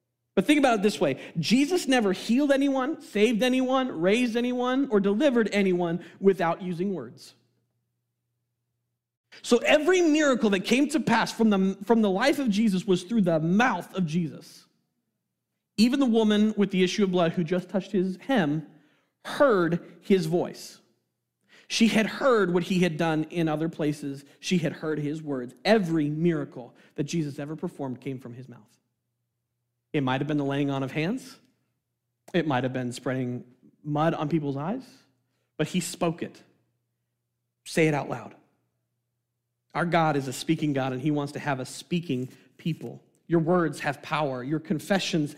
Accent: American